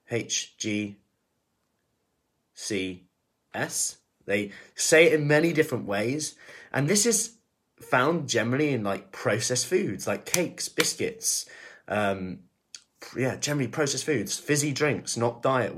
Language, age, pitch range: English, 20-39, 105-160 Hz